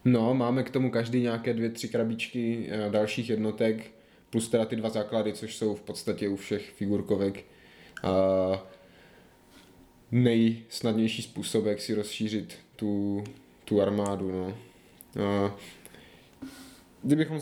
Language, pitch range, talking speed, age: Czech, 105-120 Hz, 125 wpm, 20-39